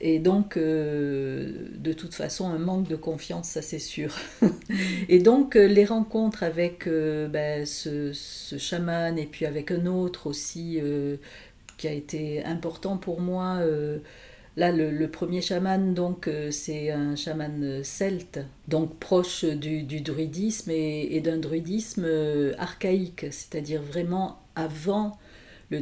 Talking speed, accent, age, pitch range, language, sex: 145 wpm, French, 50-69, 145-180 Hz, French, female